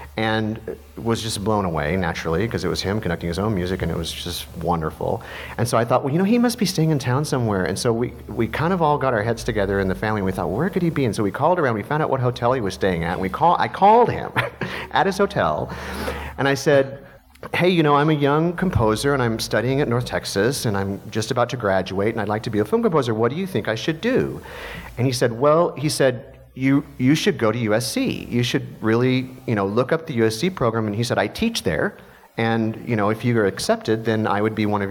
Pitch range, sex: 105-135 Hz, male